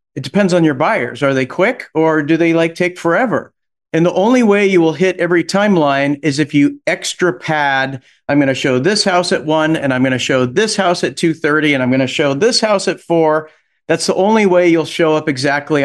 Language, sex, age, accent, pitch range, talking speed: English, male, 50-69, American, 135-170 Hz, 240 wpm